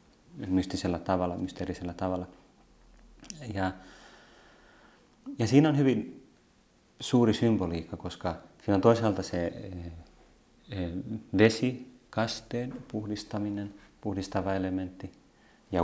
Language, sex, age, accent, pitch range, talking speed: Finnish, male, 30-49, native, 90-105 Hz, 80 wpm